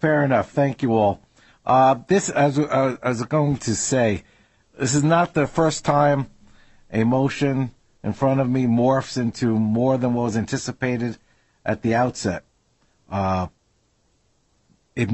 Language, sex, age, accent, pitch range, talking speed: English, male, 50-69, American, 120-150 Hz, 150 wpm